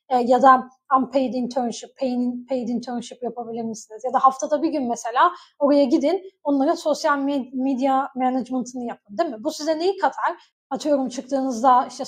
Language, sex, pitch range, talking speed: Turkish, female, 245-320 Hz, 150 wpm